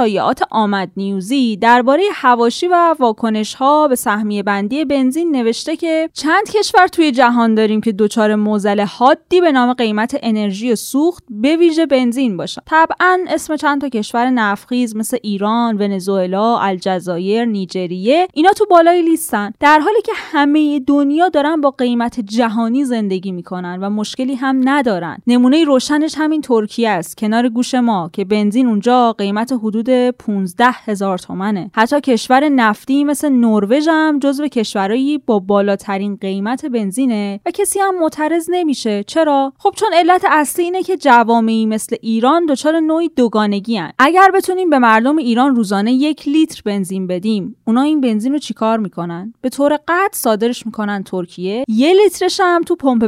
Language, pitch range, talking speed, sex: Persian, 215-300 Hz, 150 wpm, female